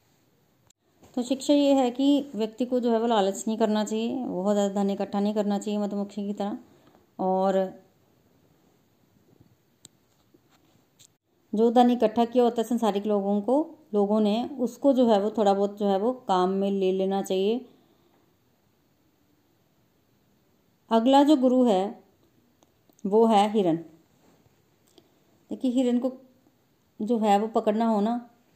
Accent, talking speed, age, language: native, 140 wpm, 30-49, Hindi